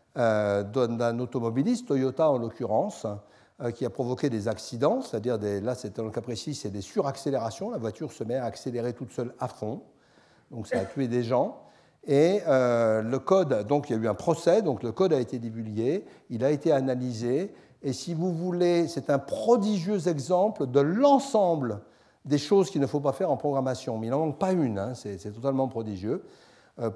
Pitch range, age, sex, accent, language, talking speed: 115-160 Hz, 60-79, male, French, French, 200 wpm